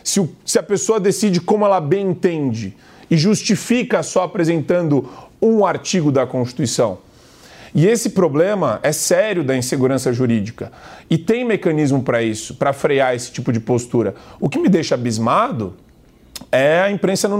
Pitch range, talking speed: 135-200 Hz, 155 wpm